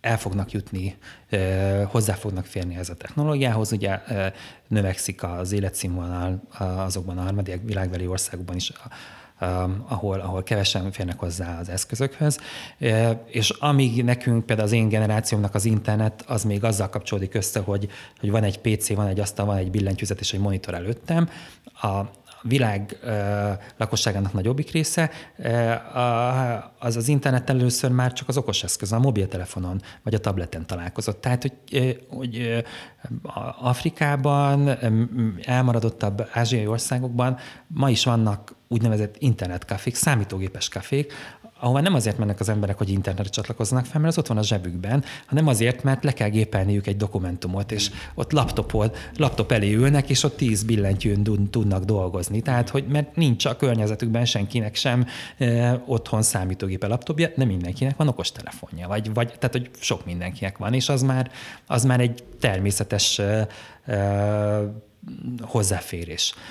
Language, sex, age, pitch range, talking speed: Hungarian, male, 30-49, 100-125 Hz, 145 wpm